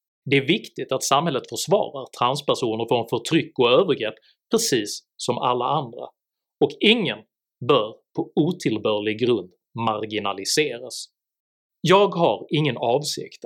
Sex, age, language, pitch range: male, 30-49, Swedish, 115-170 Hz